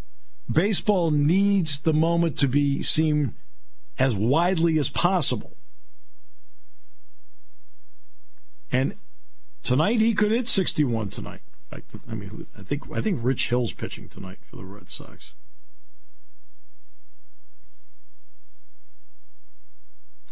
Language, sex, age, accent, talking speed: English, male, 50-69, American, 100 wpm